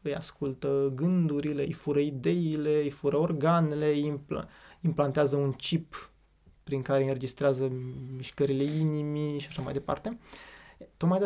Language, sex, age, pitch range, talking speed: Romanian, male, 20-39, 140-175 Hz, 130 wpm